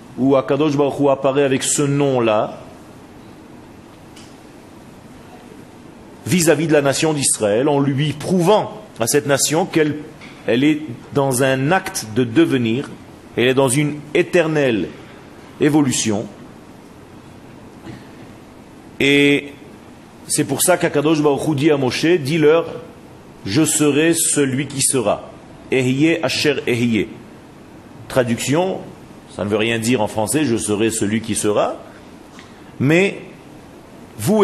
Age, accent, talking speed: 40-59, French, 115 wpm